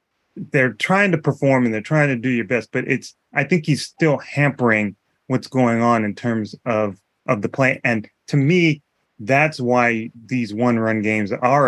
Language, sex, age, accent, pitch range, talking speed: English, male, 30-49, American, 110-140 Hz, 185 wpm